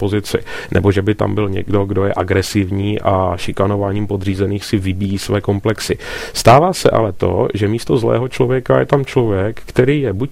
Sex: male